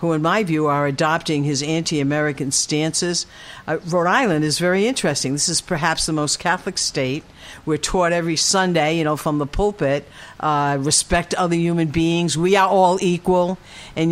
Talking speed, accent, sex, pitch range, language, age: 175 wpm, American, female, 150-185 Hz, English, 60-79